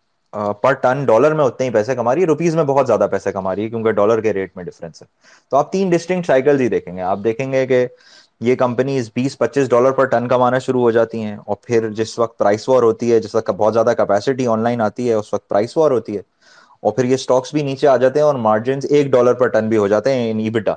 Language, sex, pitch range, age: Urdu, male, 120-145 Hz, 20-39